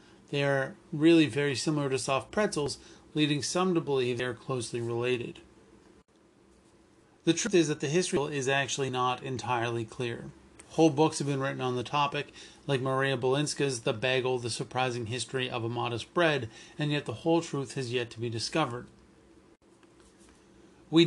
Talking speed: 165 wpm